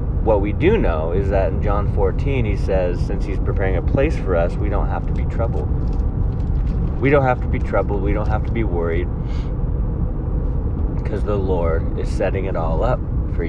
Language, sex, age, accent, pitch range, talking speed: English, male, 30-49, American, 80-110 Hz, 200 wpm